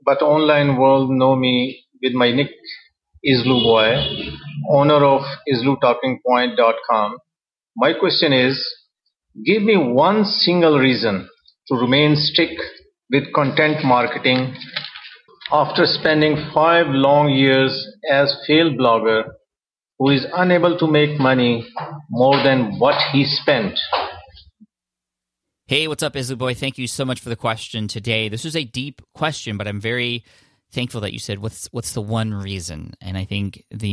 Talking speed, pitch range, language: 145 wpm, 105-140 Hz, English